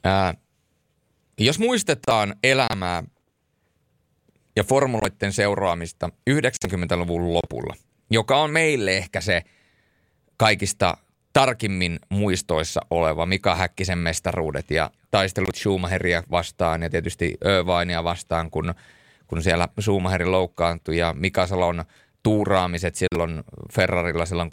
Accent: native